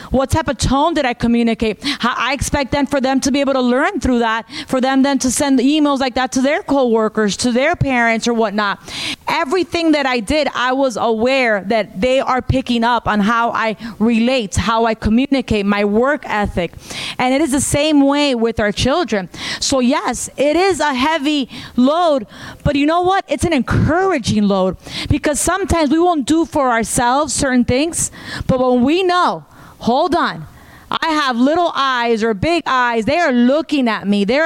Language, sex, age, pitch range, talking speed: English, female, 30-49, 245-315 Hz, 190 wpm